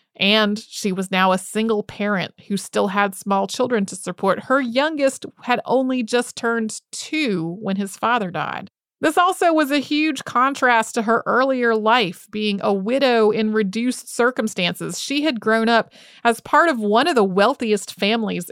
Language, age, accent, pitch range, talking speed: English, 30-49, American, 195-240 Hz, 170 wpm